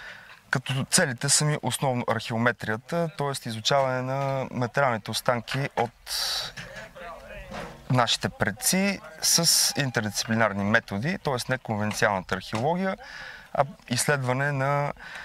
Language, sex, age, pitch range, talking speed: Bulgarian, male, 20-39, 115-150 Hz, 90 wpm